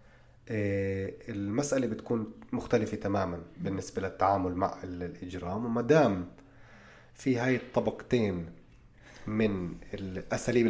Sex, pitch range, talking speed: male, 100-125 Hz, 85 wpm